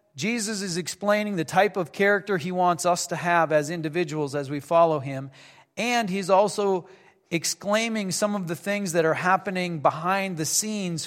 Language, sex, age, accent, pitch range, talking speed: English, male, 40-59, American, 155-200 Hz, 175 wpm